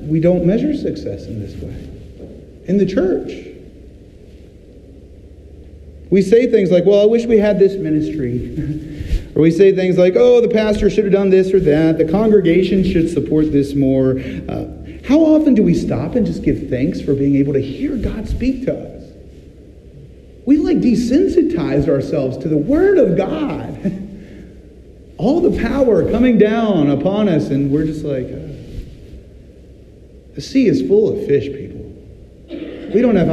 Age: 40-59